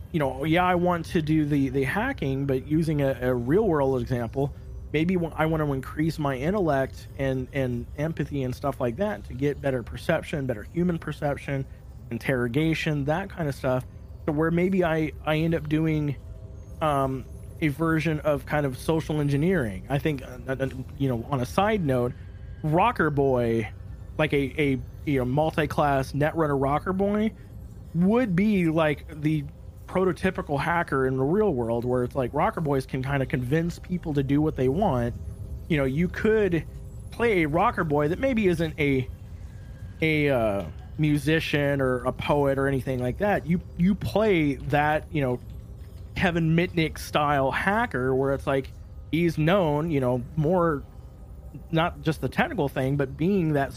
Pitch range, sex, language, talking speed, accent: 130-160 Hz, male, English, 170 wpm, American